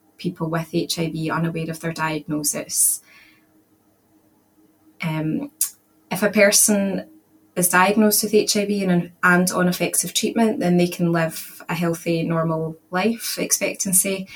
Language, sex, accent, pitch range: English, female, British, 160-185 Hz